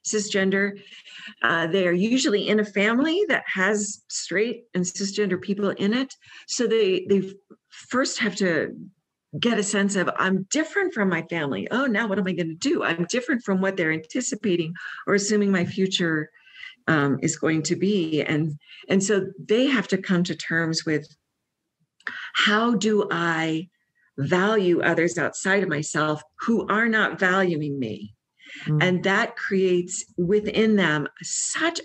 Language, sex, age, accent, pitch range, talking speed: English, female, 50-69, American, 160-210 Hz, 155 wpm